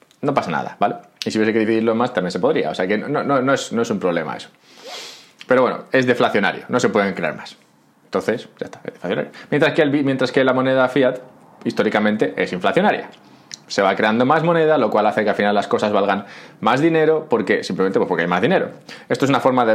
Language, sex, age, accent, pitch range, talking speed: Spanish, male, 30-49, Spanish, 105-135 Hz, 235 wpm